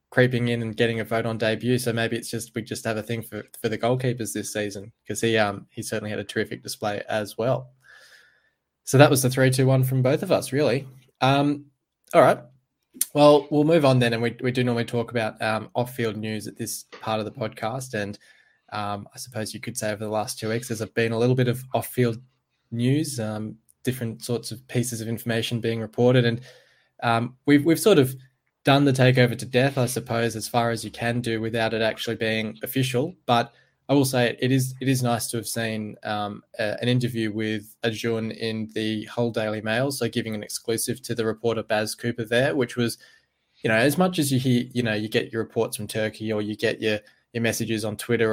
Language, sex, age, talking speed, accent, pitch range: English, male, 10-29, 225 wpm, Australian, 110-125 Hz